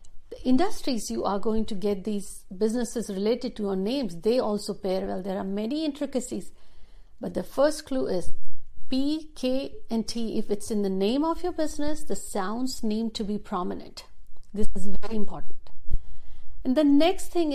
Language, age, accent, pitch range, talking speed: Hindi, 60-79, native, 190-245 Hz, 180 wpm